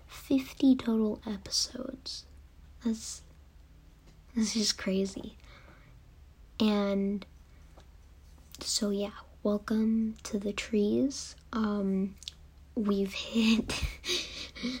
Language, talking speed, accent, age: English, 70 wpm, American, 10-29